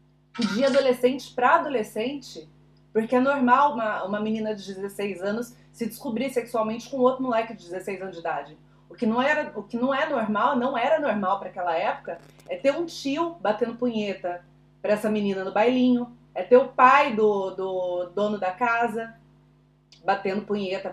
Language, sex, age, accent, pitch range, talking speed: Portuguese, female, 30-49, Brazilian, 205-255 Hz, 175 wpm